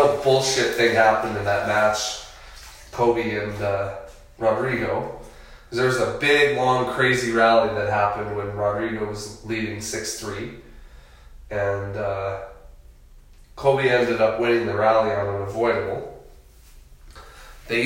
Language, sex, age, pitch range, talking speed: English, male, 20-39, 100-135 Hz, 120 wpm